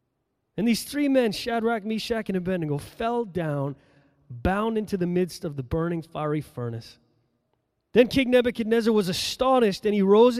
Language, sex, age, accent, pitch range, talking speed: English, male, 30-49, American, 145-200 Hz, 155 wpm